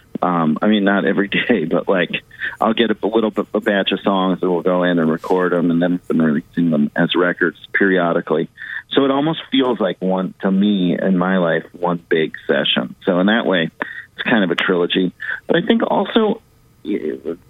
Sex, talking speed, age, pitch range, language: male, 200 wpm, 40-59, 85-115 Hz, English